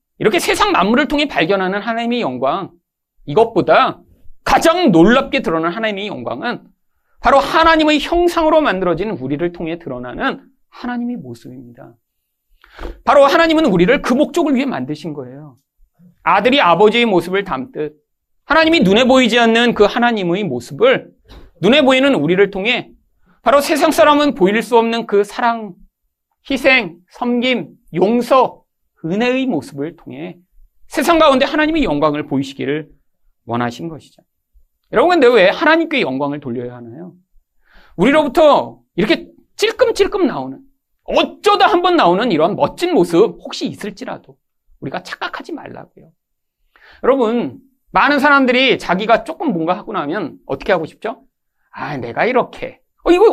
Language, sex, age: Korean, male, 40-59